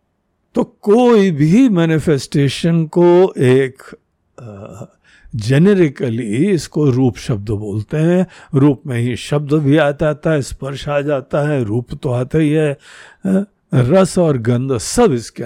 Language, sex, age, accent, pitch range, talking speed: Hindi, male, 60-79, native, 145-215 Hz, 130 wpm